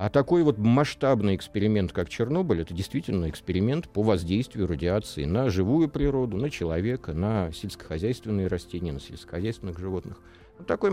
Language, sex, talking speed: Russian, male, 135 wpm